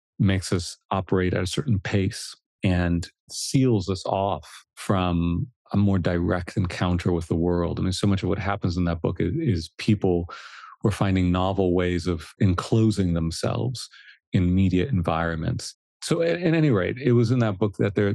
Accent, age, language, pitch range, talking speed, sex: American, 40-59, English, 95-115 Hz, 180 wpm, male